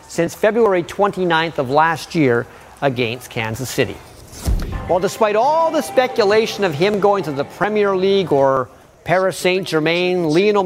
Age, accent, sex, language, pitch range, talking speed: 40-59, American, male, English, 140-185 Hz, 140 wpm